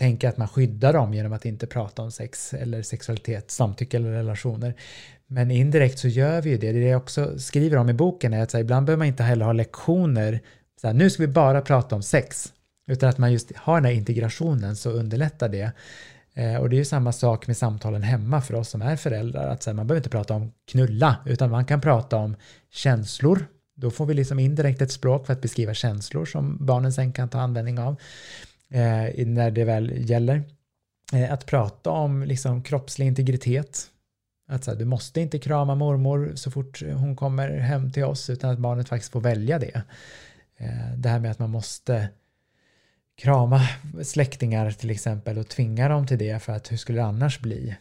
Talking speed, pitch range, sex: 200 wpm, 115-135 Hz, male